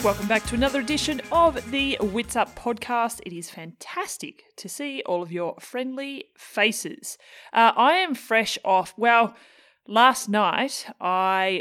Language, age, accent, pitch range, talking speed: English, 30-49, Australian, 175-220 Hz, 150 wpm